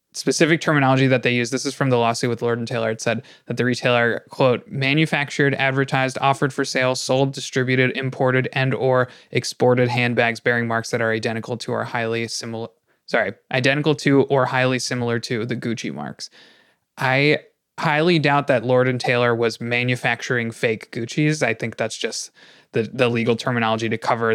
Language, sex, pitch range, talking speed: English, male, 115-130 Hz, 175 wpm